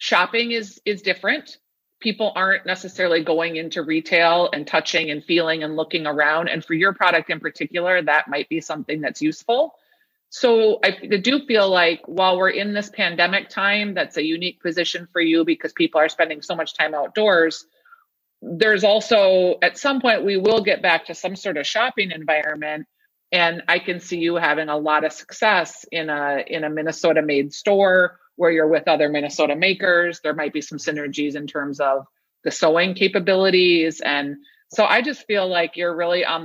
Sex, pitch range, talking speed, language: female, 160-205 Hz, 185 wpm, English